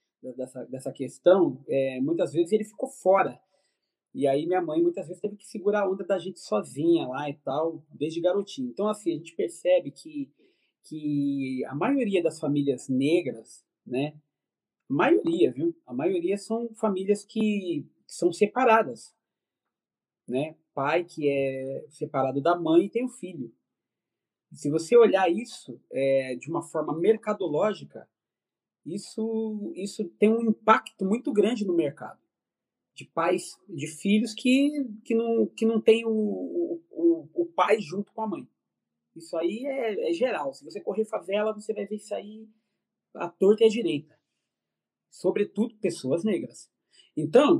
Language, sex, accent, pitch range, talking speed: Portuguese, male, Brazilian, 155-225 Hz, 155 wpm